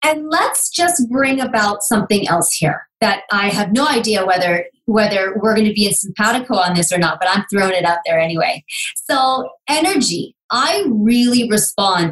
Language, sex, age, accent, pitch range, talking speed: English, female, 30-49, American, 185-245 Hz, 185 wpm